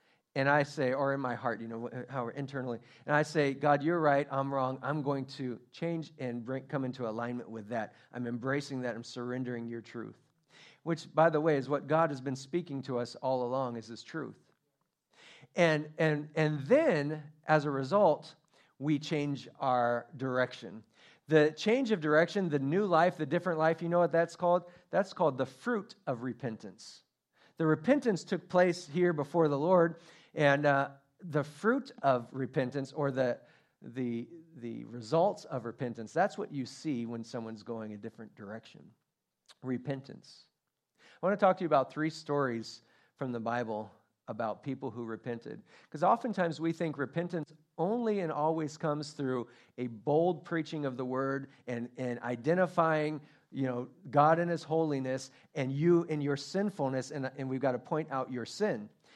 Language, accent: English, American